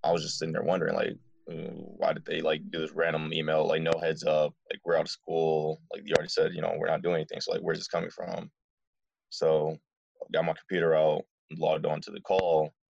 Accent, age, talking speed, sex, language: American, 20-39, 235 wpm, male, English